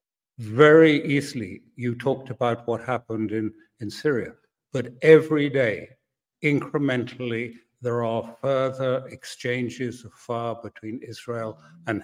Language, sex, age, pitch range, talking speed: English, male, 60-79, 115-135 Hz, 115 wpm